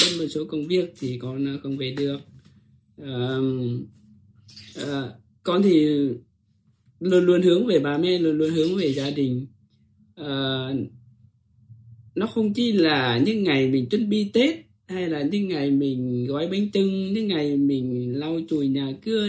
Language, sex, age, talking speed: Vietnamese, male, 20-39, 160 wpm